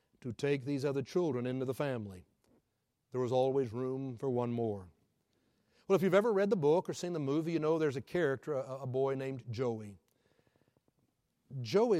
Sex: male